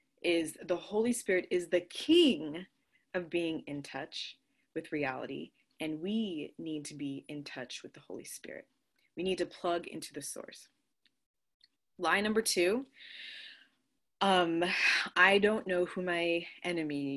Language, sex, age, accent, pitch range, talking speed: English, female, 20-39, American, 175-260 Hz, 145 wpm